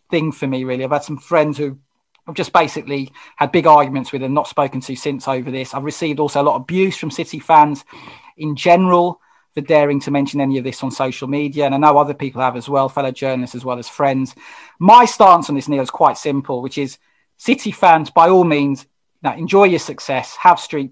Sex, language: male, English